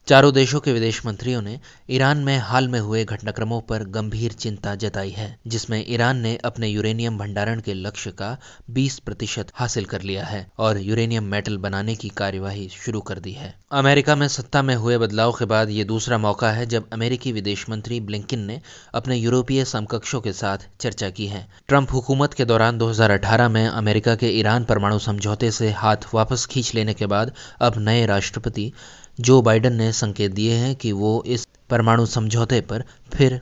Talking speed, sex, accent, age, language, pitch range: 185 wpm, male, native, 20-39, Hindi, 105-125 Hz